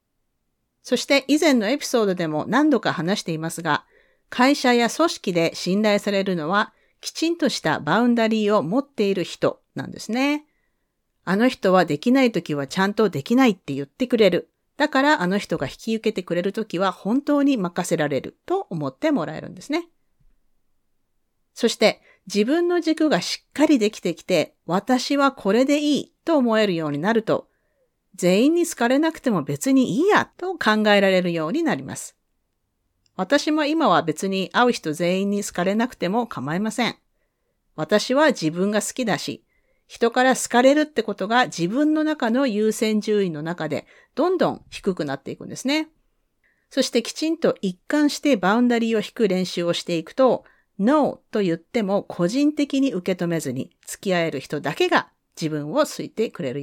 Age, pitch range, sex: 40-59, 180-275 Hz, female